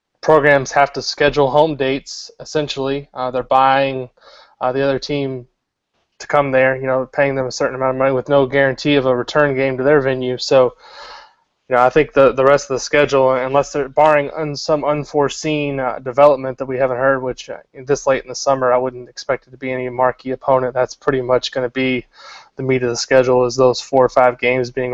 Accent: American